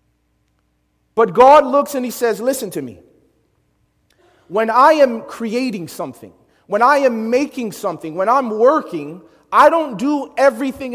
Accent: American